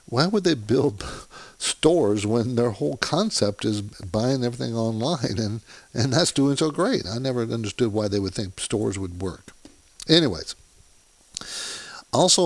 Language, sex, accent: English, male, American